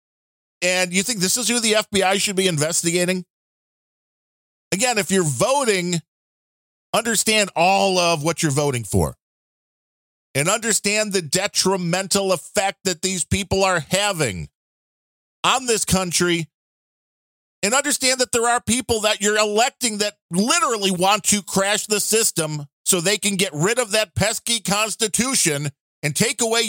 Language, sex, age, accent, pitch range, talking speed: English, male, 50-69, American, 165-220 Hz, 140 wpm